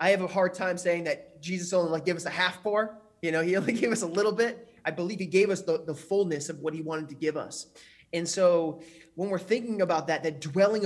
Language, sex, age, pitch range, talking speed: English, male, 20-39, 170-210 Hz, 265 wpm